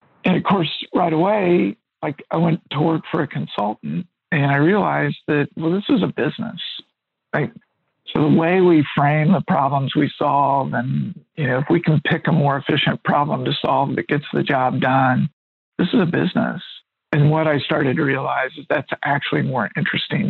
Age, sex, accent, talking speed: 60-79, male, American, 185 wpm